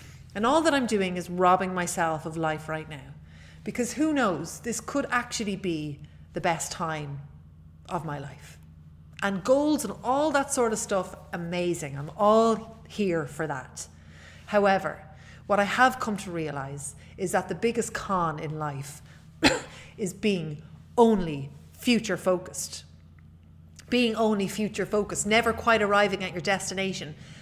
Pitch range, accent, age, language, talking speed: 160-255 Hz, Irish, 30-49, English, 150 wpm